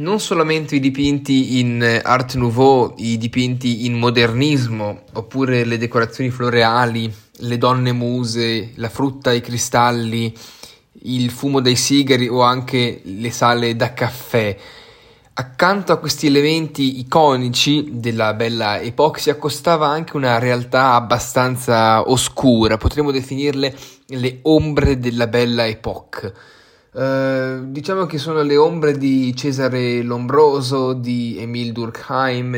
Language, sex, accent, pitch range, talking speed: Italian, male, native, 115-135 Hz, 120 wpm